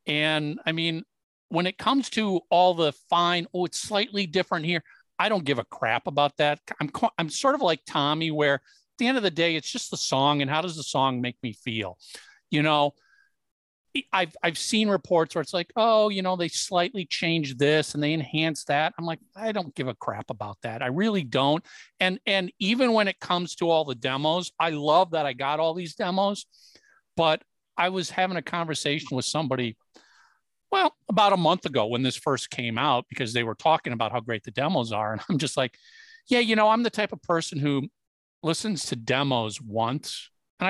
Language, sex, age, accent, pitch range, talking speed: English, male, 50-69, American, 135-185 Hz, 210 wpm